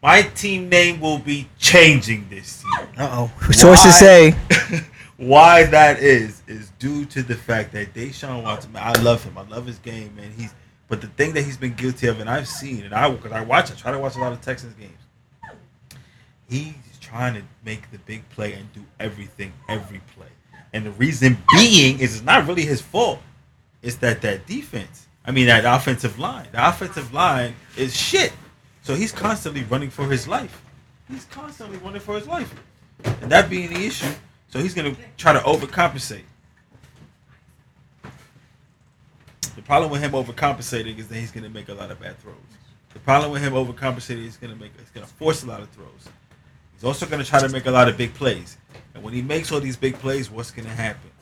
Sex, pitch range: male, 115-140 Hz